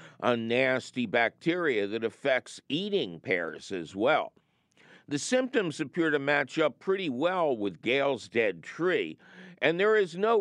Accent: American